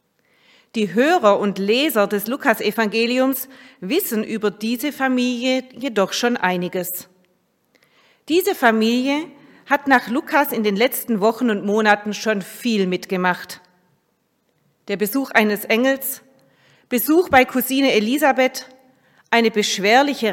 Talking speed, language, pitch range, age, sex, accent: 110 wpm, German, 205-260 Hz, 40-59, female, German